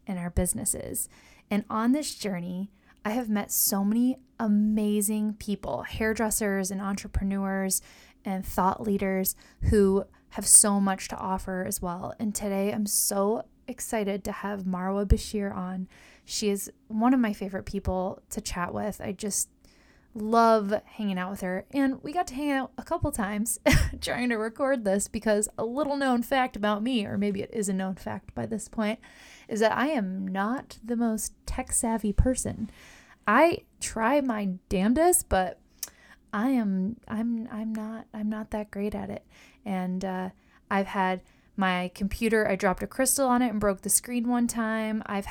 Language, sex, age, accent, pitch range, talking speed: English, female, 10-29, American, 195-230 Hz, 170 wpm